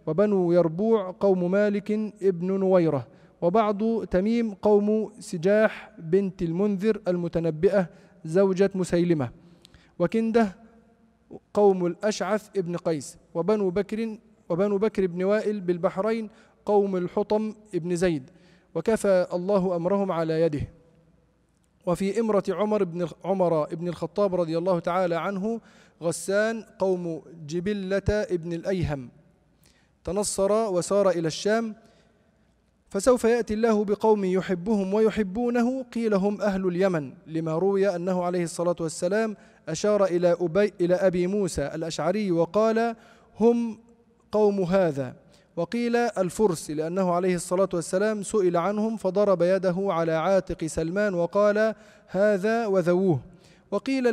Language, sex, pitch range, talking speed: Arabic, male, 175-210 Hz, 110 wpm